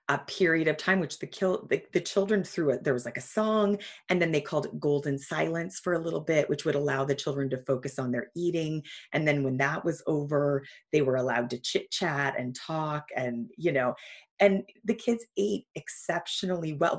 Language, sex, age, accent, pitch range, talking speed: English, female, 30-49, American, 140-185 Hz, 215 wpm